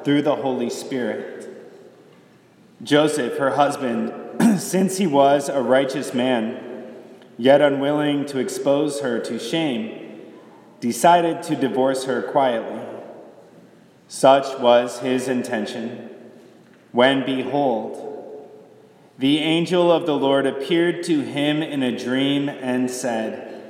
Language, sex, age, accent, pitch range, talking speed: English, male, 30-49, American, 130-160 Hz, 110 wpm